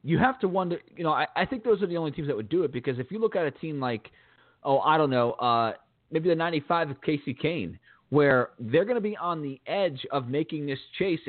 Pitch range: 135-180 Hz